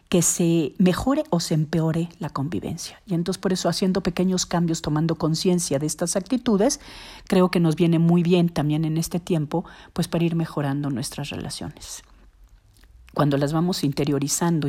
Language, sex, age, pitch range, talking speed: Spanish, female, 40-59, 150-190 Hz, 165 wpm